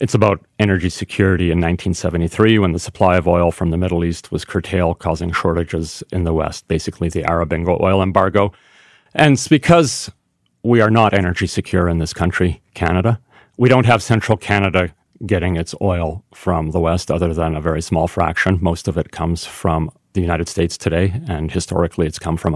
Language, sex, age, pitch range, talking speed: English, male, 40-59, 85-100 Hz, 185 wpm